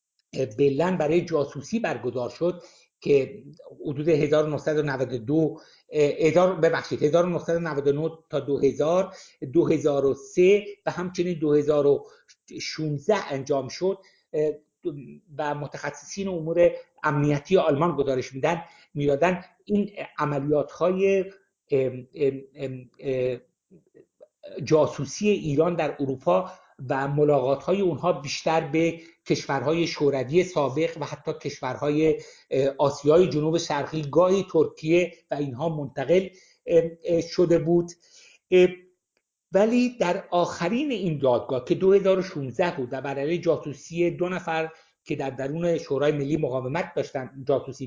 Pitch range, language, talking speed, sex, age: 140-180 Hz, Persian, 95 wpm, male, 60-79